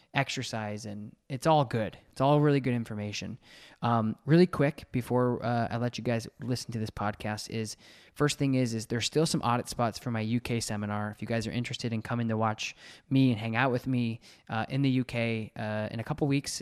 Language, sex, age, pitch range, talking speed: English, male, 20-39, 115-140 Hz, 220 wpm